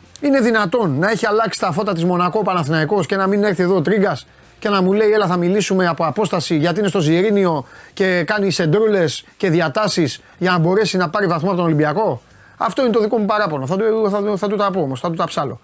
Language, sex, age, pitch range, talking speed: Greek, male, 30-49, 150-200 Hz, 235 wpm